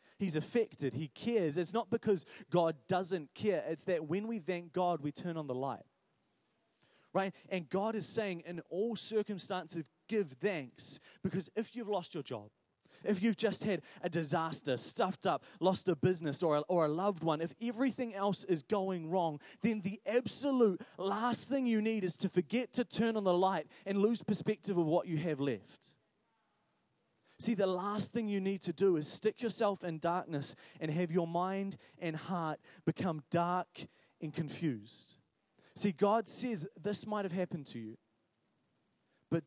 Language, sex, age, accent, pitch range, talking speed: English, male, 20-39, Australian, 155-200 Hz, 175 wpm